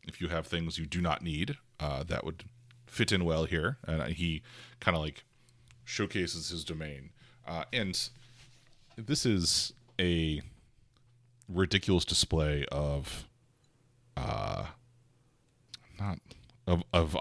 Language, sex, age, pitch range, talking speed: English, male, 30-49, 80-120 Hz, 120 wpm